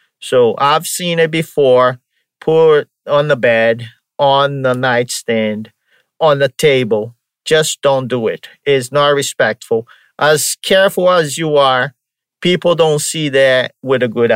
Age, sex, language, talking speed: 50-69, male, English, 140 wpm